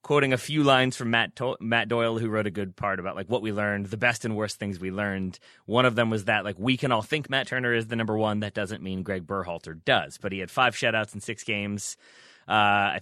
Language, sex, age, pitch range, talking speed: English, male, 20-39, 100-125 Hz, 265 wpm